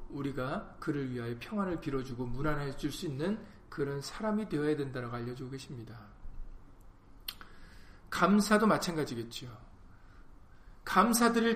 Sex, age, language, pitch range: male, 40-59, Korean, 130-195 Hz